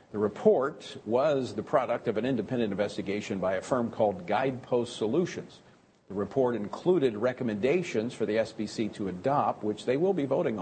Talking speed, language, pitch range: 165 wpm, English, 110-145 Hz